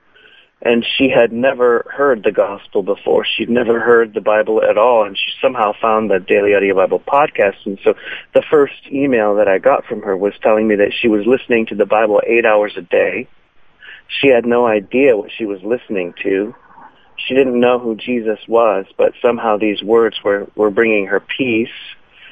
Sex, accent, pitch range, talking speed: male, American, 105-125 Hz, 195 wpm